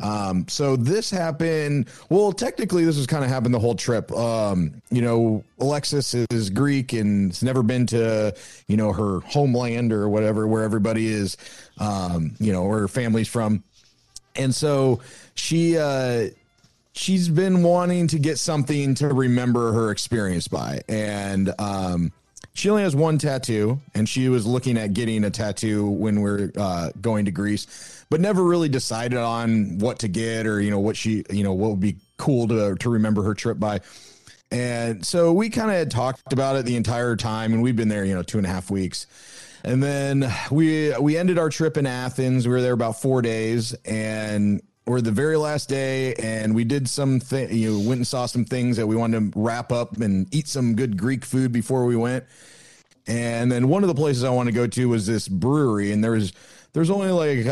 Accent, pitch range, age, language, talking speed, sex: American, 105-135 Hz, 30-49, English, 205 wpm, male